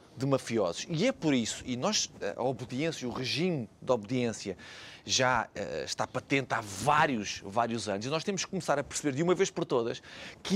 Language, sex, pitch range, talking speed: Portuguese, male, 130-195 Hz, 195 wpm